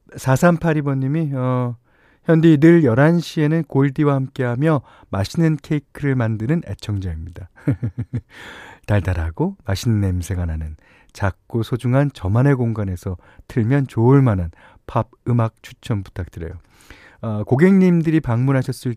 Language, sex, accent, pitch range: Korean, male, native, 95-145 Hz